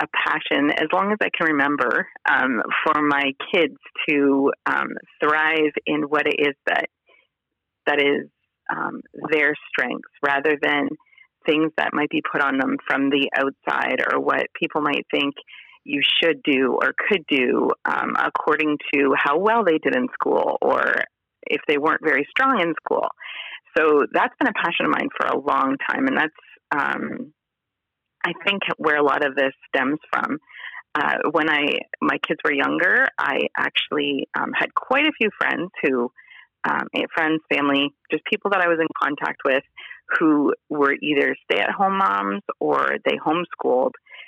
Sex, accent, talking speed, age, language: female, American, 170 wpm, 30-49, English